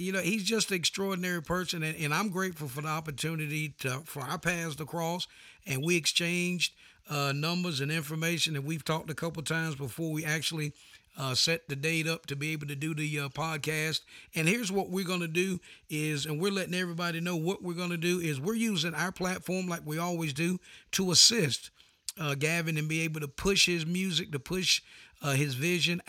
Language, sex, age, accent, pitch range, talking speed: English, male, 50-69, American, 155-185 Hz, 210 wpm